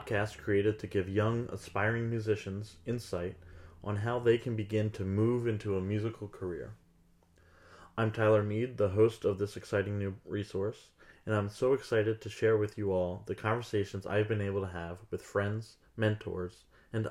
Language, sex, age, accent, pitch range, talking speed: English, male, 30-49, American, 95-110 Hz, 170 wpm